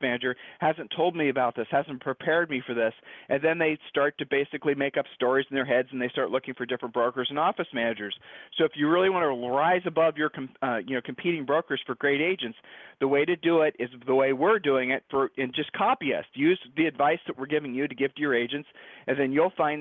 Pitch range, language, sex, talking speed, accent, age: 135-165 Hz, English, male, 250 wpm, American, 40-59